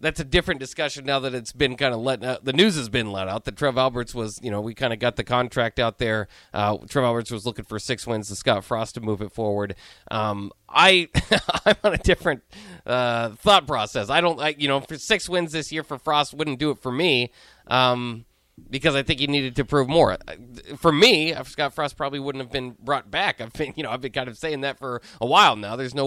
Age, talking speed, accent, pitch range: 30-49, 250 wpm, American, 125-165 Hz